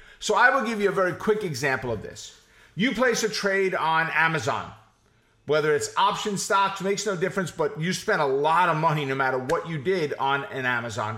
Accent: American